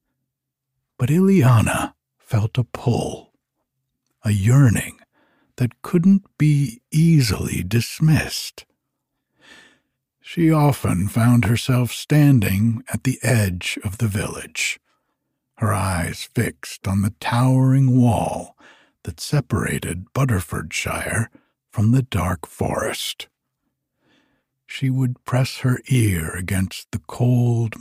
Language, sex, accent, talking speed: English, male, American, 95 wpm